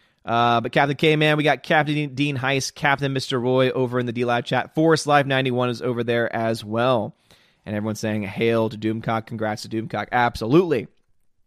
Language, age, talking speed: English, 20-39, 190 wpm